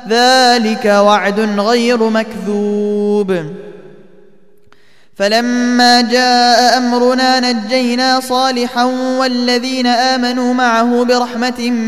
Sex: male